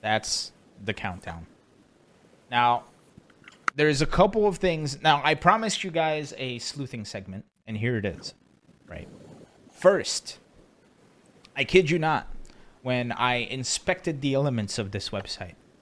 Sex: male